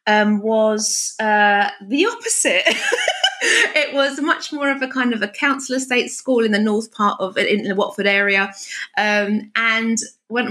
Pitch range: 200-265 Hz